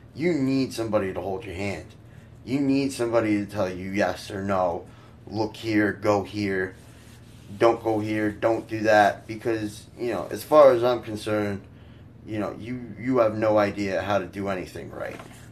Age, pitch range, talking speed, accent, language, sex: 20-39, 100-115 Hz, 180 wpm, American, English, male